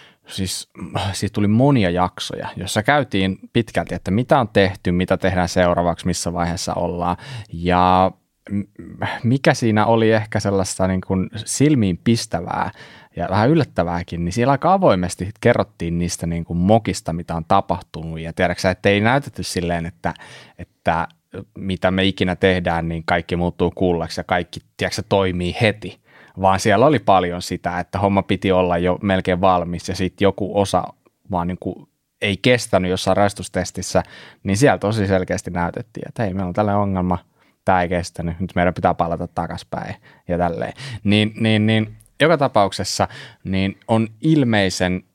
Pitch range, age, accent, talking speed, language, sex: 90-105 Hz, 20-39, native, 155 wpm, Finnish, male